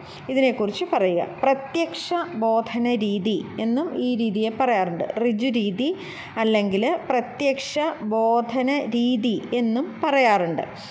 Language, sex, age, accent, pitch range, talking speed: Malayalam, female, 30-49, native, 220-280 Hz, 75 wpm